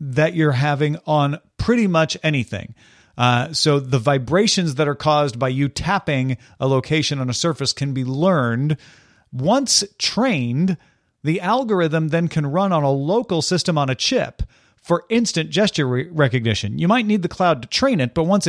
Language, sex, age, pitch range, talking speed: English, male, 40-59, 130-175 Hz, 170 wpm